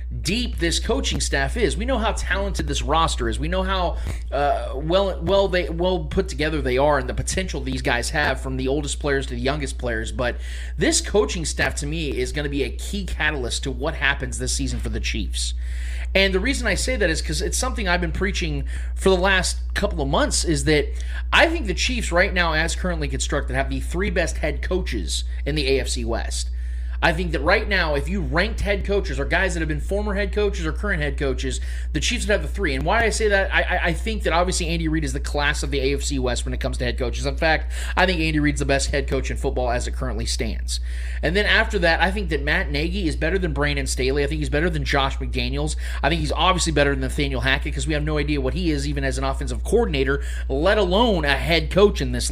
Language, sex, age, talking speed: English, male, 30-49, 245 wpm